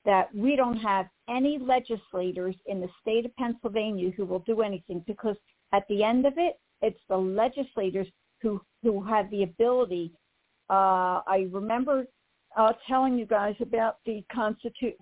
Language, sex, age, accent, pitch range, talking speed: English, female, 60-79, American, 195-255 Hz, 155 wpm